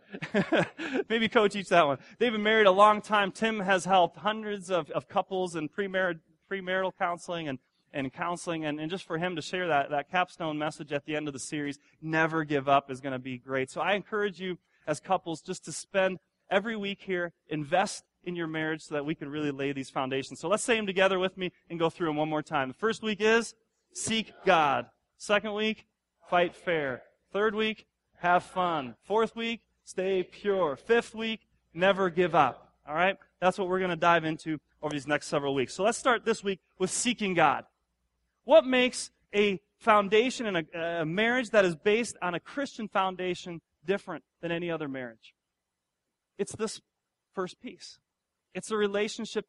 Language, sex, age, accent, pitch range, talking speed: English, male, 30-49, American, 160-210 Hz, 195 wpm